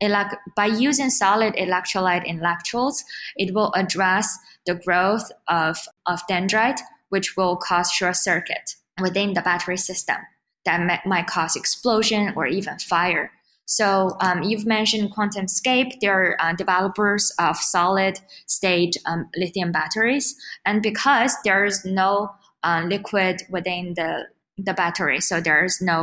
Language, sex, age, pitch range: Chinese, female, 10-29, 180-210 Hz